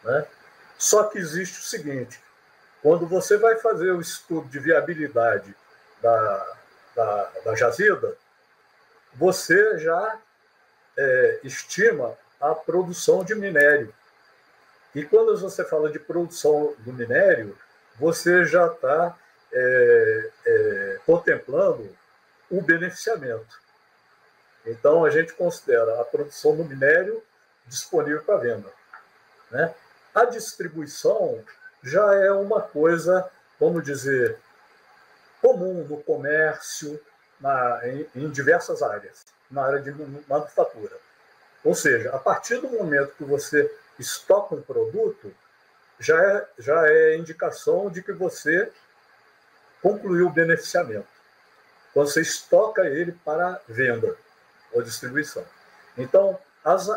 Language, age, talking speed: Portuguese, 60-79, 115 wpm